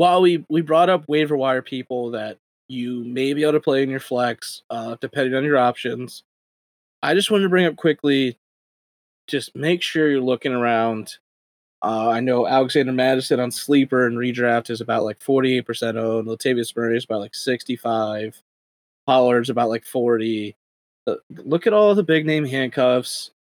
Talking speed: 170 wpm